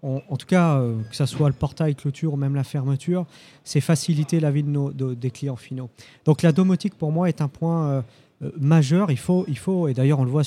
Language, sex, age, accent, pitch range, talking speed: French, male, 40-59, French, 135-165 Hz, 240 wpm